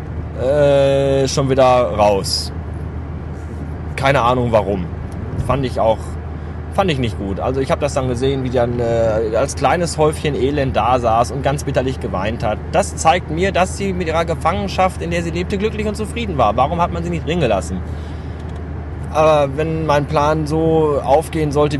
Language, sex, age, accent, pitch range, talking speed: German, male, 20-39, German, 85-125 Hz, 175 wpm